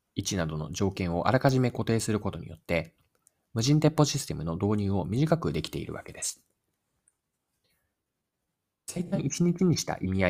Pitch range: 85-140 Hz